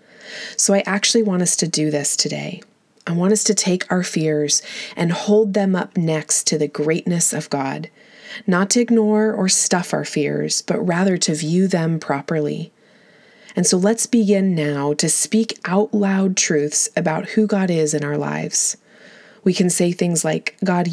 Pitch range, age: 155-205 Hz, 20-39